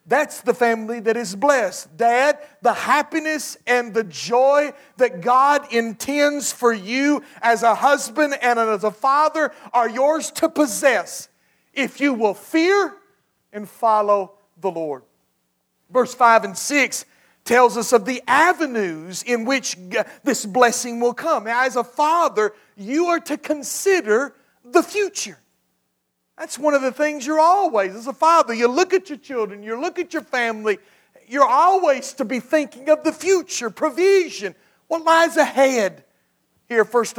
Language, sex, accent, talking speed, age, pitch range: English, male, American, 150 wpm, 50-69, 215-290 Hz